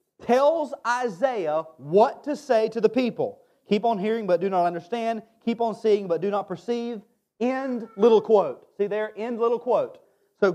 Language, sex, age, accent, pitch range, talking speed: English, male, 30-49, American, 165-240 Hz, 175 wpm